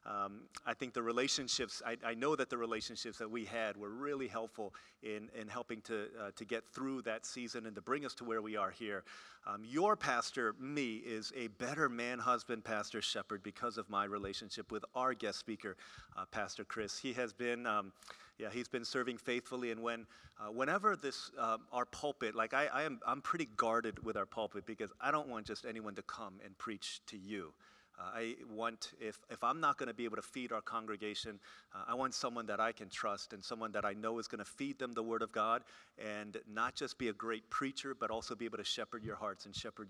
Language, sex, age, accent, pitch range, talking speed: English, male, 40-59, American, 110-120 Hz, 225 wpm